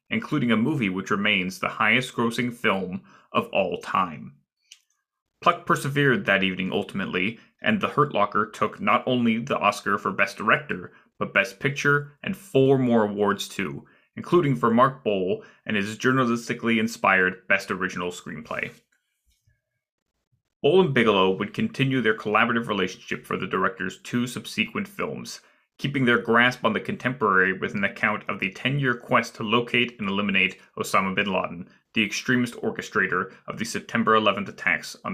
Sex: male